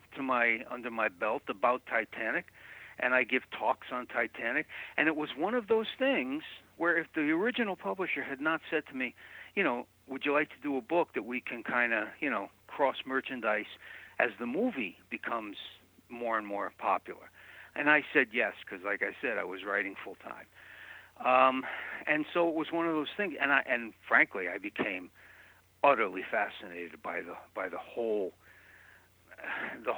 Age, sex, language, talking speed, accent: 60-79, male, English, 185 wpm, American